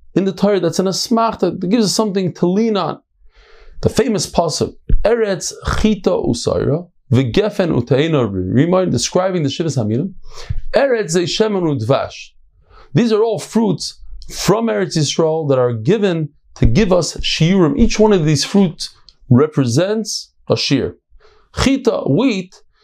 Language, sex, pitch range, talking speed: English, male, 140-205 Hz, 140 wpm